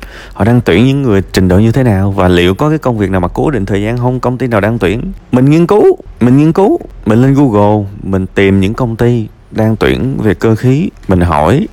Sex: male